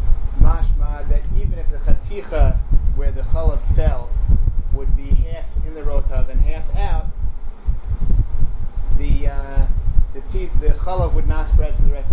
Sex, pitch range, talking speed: male, 75-90 Hz, 145 wpm